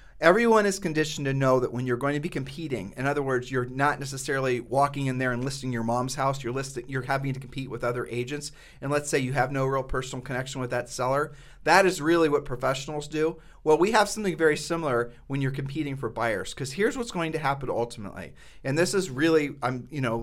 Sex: male